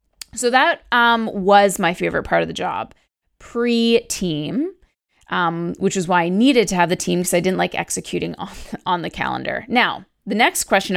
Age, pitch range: 20-39, 180-230 Hz